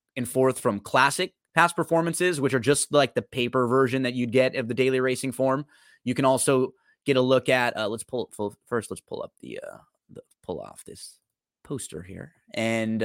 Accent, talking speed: American, 210 wpm